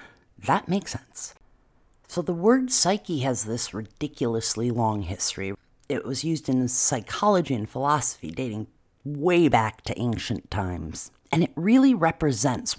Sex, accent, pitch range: female, American, 115-180 Hz